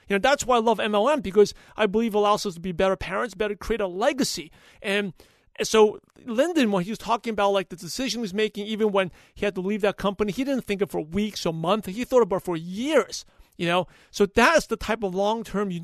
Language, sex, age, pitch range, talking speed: English, male, 40-59, 190-225 Hz, 255 wpm